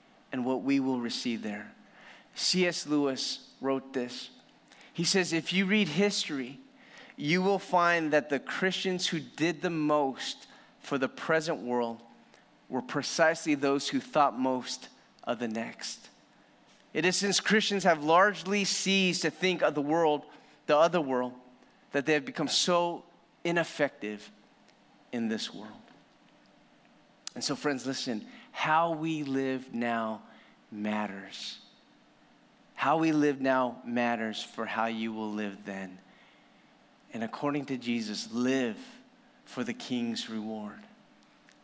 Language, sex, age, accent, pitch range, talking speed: English, male, 30-49, American, 120-175 Hz, 135 wpm